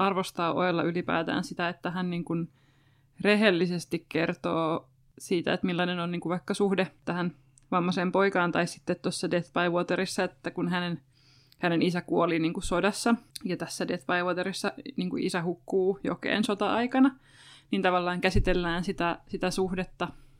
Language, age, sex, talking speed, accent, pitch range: Finnish, 20-39, female, 155 wpm, native, 160-185 Hz